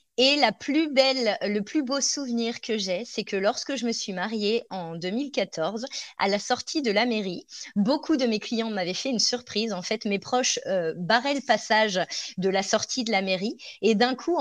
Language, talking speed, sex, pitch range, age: French, 195 wpm, female, 195-240 Hz, 20-39